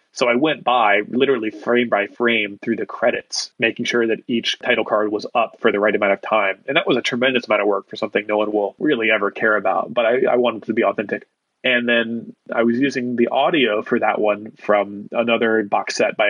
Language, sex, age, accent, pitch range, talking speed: English, male, 30-49, American, 105-120 Hz, 235 wpm